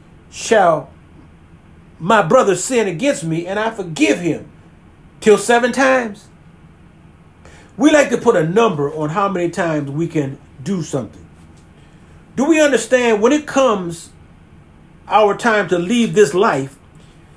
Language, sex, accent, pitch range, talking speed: English, male, American, 155-225 Hz, 135 wpm